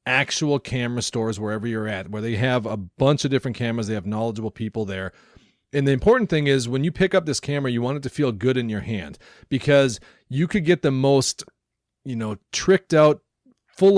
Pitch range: 115-150 Hz